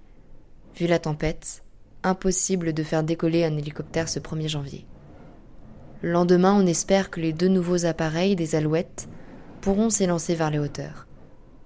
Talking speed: 145 wpm